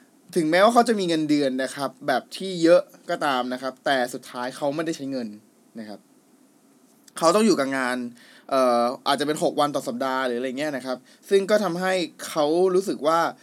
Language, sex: Thai, male